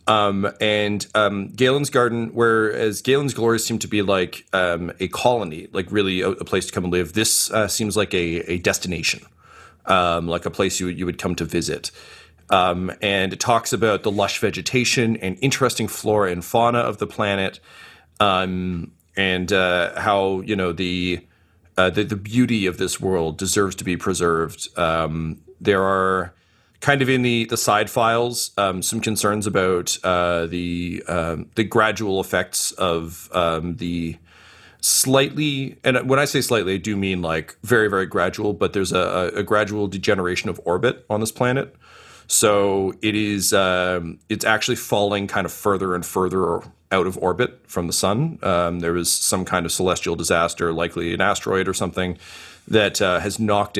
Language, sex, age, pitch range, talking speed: English, male, 30-49, 90-110 Hz, 175 wpm